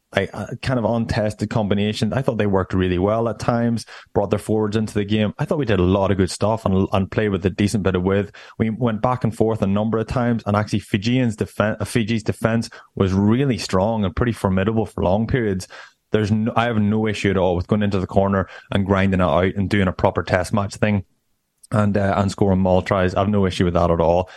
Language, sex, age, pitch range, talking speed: English, male, 20-39, 95-110 Hz, 245 wpm